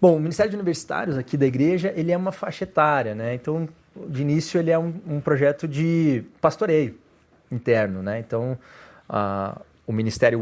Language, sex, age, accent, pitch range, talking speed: Portuguese, male, 20-39, Brazilian, 120-155 Hz, 175 wpm